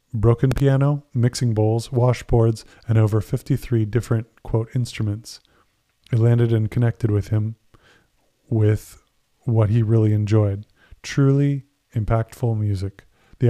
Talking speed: 115 wpm